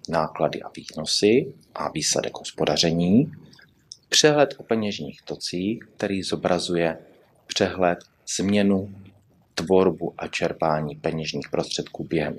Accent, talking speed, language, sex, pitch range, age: native, 95 wpm, Czech, male, 80-105 Hz, 30-49